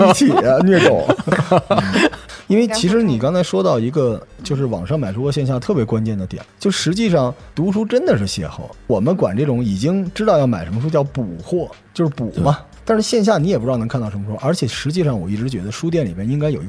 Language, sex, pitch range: Chinese, male, 110-165 Hz